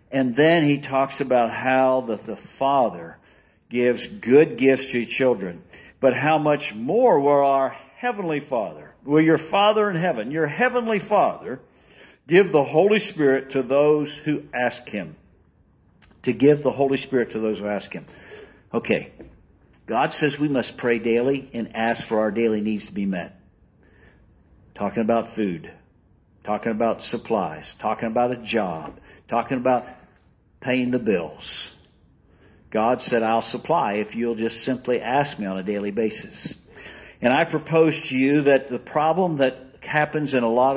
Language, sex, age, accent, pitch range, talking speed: English, male, 50-69, American, 115-145 Hz, 160 wpm